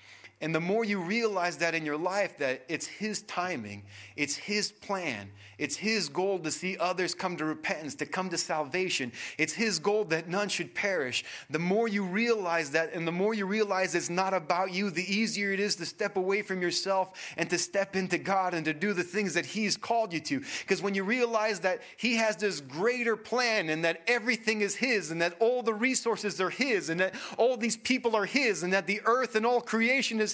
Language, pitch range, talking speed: English, 190-265 Hz, 220 wpm